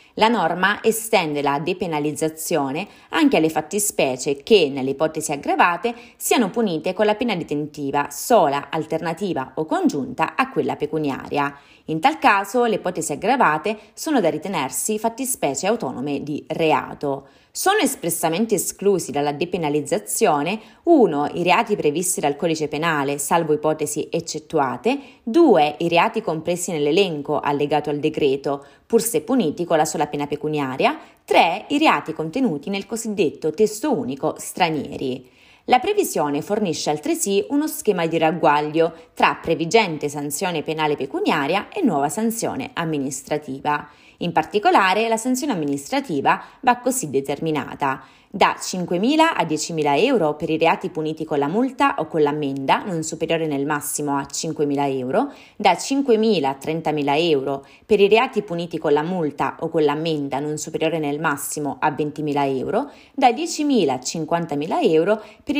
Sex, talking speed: female, 140 wpm